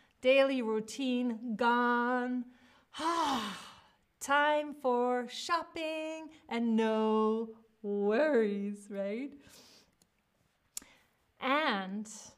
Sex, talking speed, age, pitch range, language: female, 60 wpm, 30-49, 205-270 Hz, English